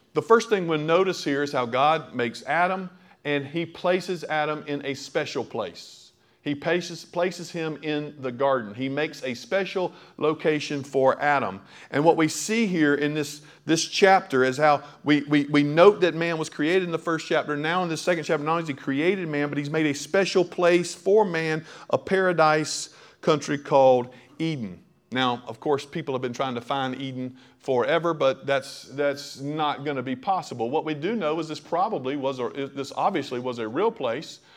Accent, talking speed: American, 195 wpm